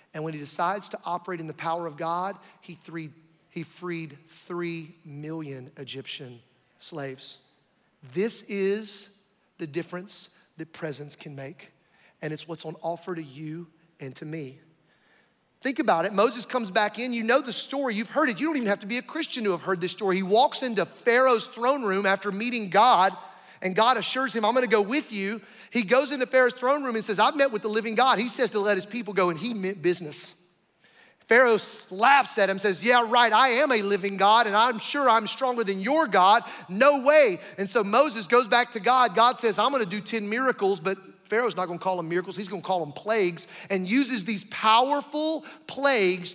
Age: 30-49